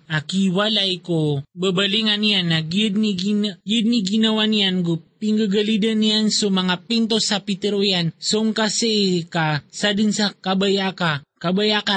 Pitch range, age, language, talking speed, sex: 170-205 Hz, 20-39, Filipino, 125 wpm, male